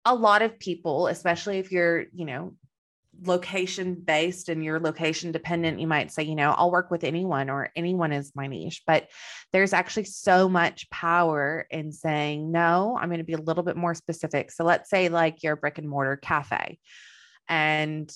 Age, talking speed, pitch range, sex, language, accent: 20-39, 190 wpm, 145-170 Hz, female, English, American